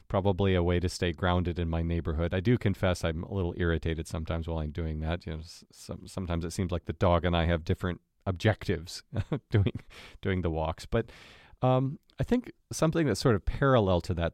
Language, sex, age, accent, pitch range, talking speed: English, male, 40-59, American, 85-115 Hz, 210 wpm